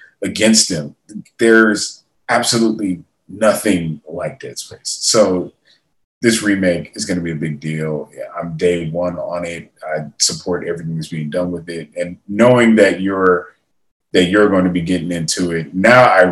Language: English